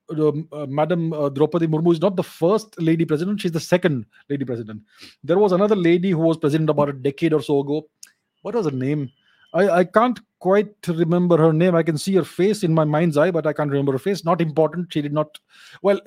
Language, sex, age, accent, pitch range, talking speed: English, male, 30-49, Indian, 150-190 Hz, 230 wpm